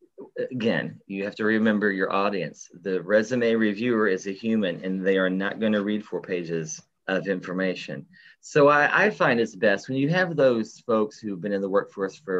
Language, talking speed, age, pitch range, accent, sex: English, 200 wpm, 30-49, 90-115 Hz, American, male